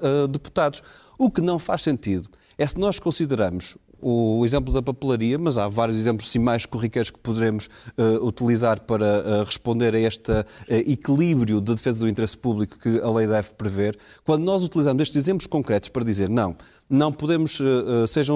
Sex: male